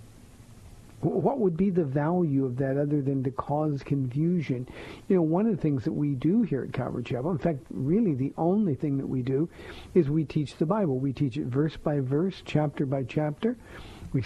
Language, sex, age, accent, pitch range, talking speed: English, male, 60-79, American, 135-165 Hz, 205 wpm